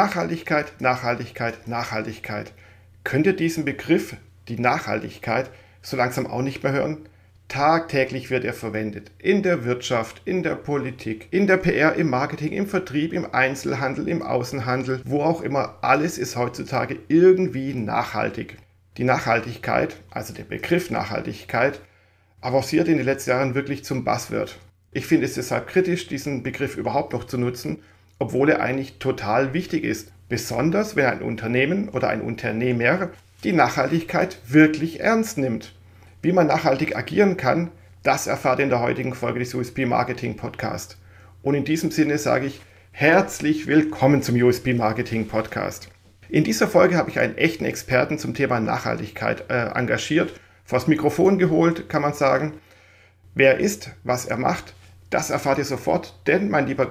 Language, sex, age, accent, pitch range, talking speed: German, male, 40-59, German, 110-150 Hz, 155 wpm